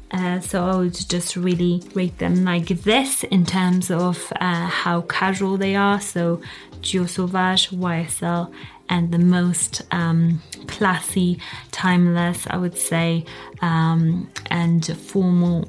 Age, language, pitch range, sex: 20-39, English, 170-185 Hz, female